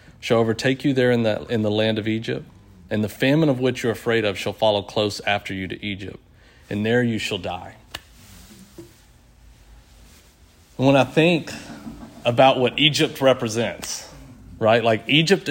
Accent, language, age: American, English, 40-59